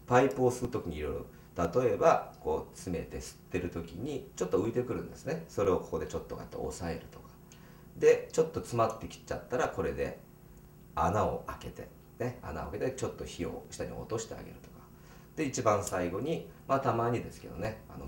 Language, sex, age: Japanese, male, 40-59